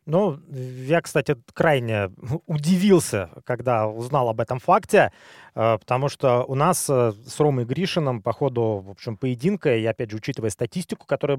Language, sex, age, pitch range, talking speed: Russian, male, 20-39, 120-155 Hz, 150 wpm